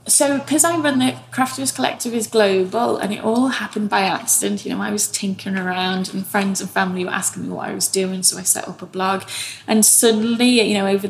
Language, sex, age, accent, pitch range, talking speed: English, female, 20-39, British, 190-220 Hz, 230 wpm